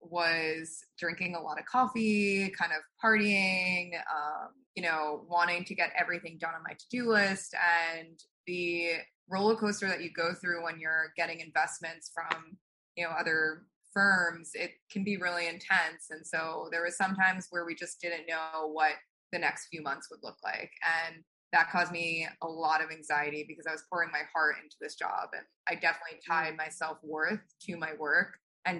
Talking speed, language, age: 185 wpm, English, 20-39